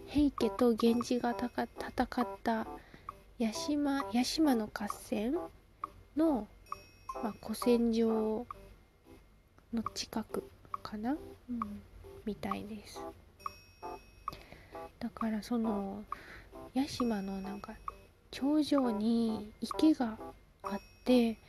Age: 20-39